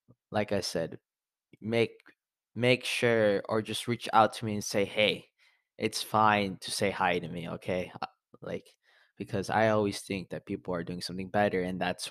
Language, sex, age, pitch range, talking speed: English, male, 20-39, 95-110 Hz, 180 wpm